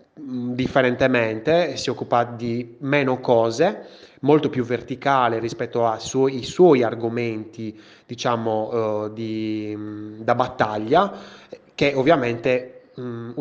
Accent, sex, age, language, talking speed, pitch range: native, male, 20-39, Italian, 105 wpm, 115-140 Hz